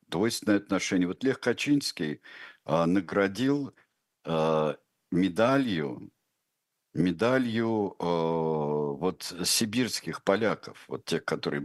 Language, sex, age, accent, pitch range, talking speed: Russian, male, 60-79, native, 80-110 Hz, 95 wpm